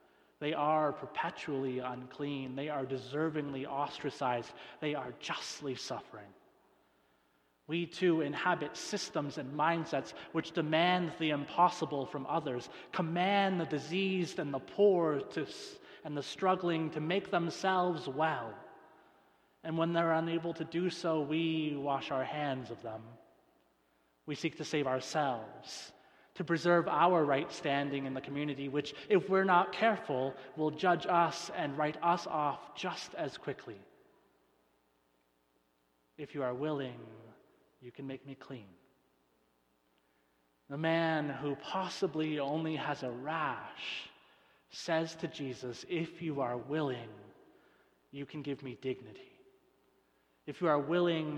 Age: 30-49